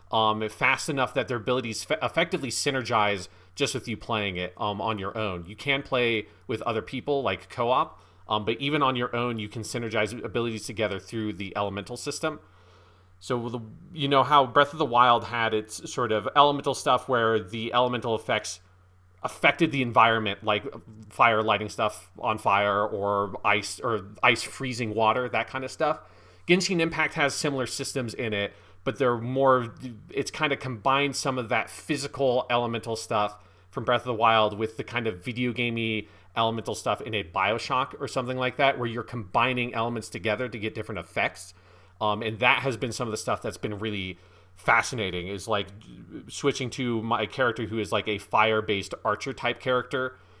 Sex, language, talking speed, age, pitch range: male, English, 180 wpm, 30-49, 105-130 Hz